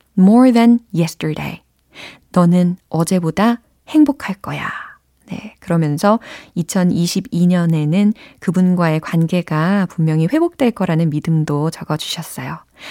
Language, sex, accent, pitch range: Korean, female, native, 165-235 Hz